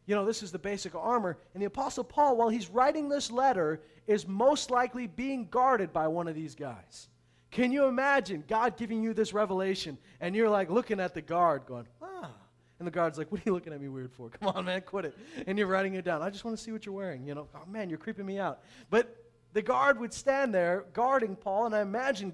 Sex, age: male, 30-49